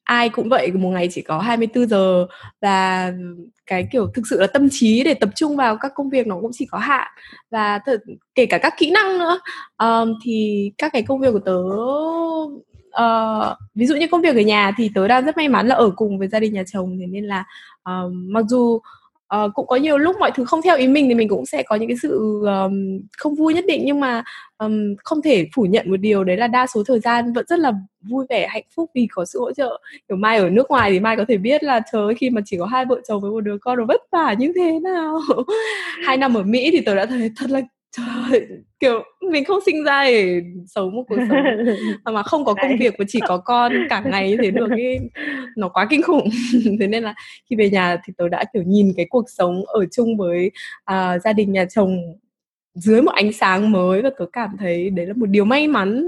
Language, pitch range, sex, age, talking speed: English, 200-265 Hz, female, 10-29, 250 wpm